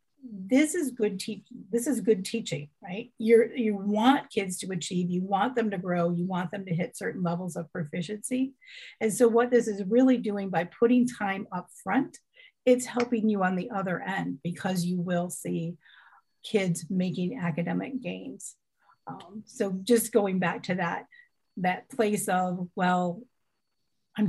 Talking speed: 170 wpm